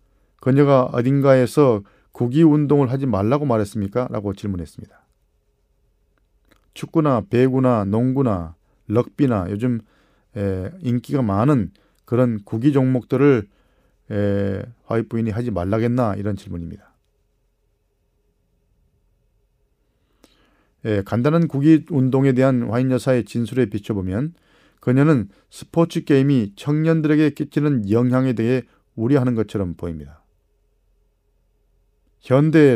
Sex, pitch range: male, 105-135 Hz